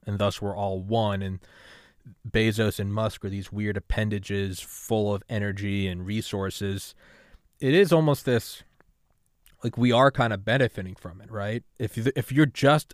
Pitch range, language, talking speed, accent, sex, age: 95-115 Hz, English, 160 wpm, American, male, 20-39